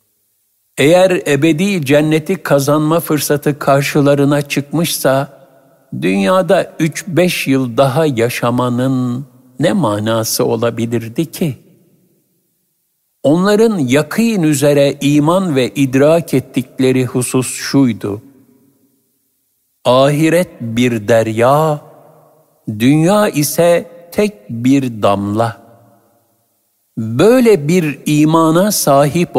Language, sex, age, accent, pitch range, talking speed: Turkish, male, 60-79, native, 125-165 Hz, 80 wpm